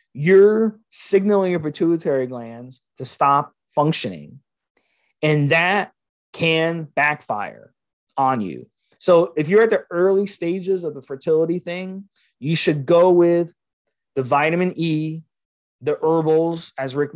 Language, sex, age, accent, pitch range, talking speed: English, male, 30-49, American, 130-170 Hz, 125 wpm